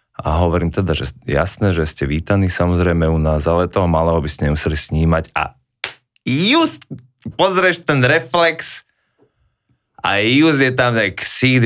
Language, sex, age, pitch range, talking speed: Slovak, male, 20-39, 85-115 Hz, 150 wpm